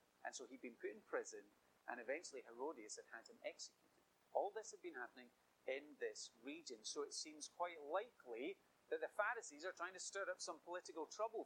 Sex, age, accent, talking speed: male, 40-59, British, 200 wpm